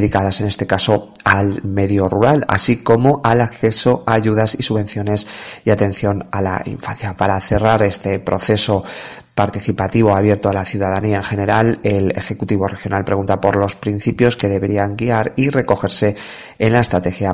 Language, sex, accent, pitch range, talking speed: Spanish, male, Spanish, 95-105 Hz, 160 wpm